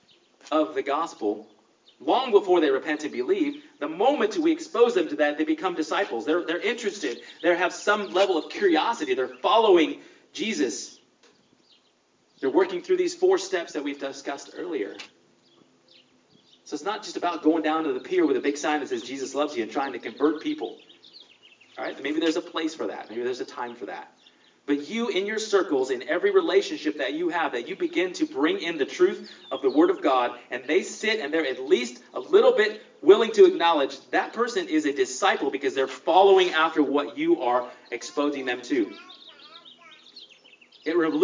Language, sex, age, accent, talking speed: English, male, 30-49, American, 190 wpm